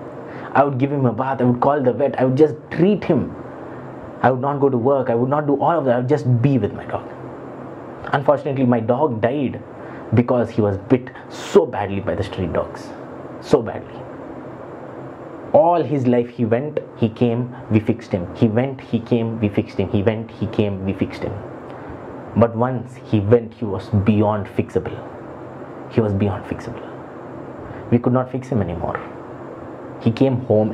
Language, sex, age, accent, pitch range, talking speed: English, male, 20-39, Indian, 110-135 Hz, 190 wpm